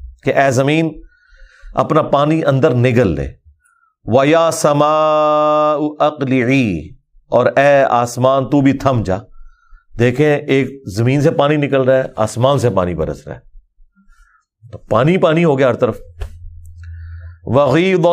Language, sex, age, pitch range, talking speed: Urdu, male, 50-69, 110-155 Hz, 130 wpm